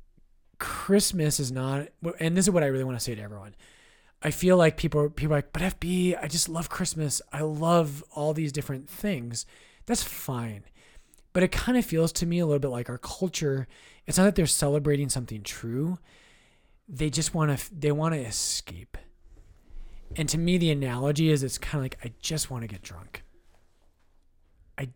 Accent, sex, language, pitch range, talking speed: American, male, English, 115-155 Hz, 190 wpm